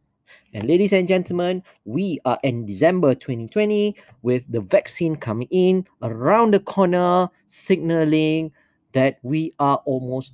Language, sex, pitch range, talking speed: English, male, 135-185 Hz, 130 wpm